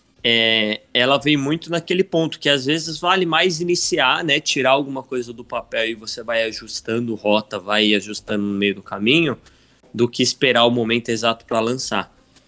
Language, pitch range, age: Portuguese, 110-140 Hz, 20-39